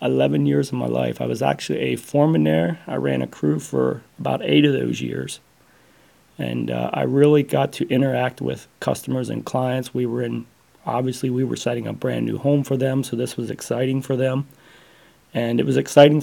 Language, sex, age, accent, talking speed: English, male, 30-49, American, 205 wpm